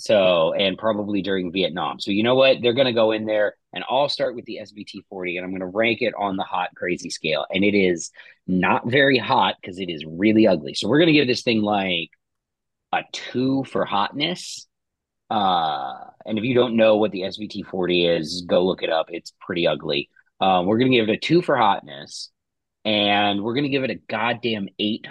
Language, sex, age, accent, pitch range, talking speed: English, male, 30-49, American, 95-125 Hz, 220 wpm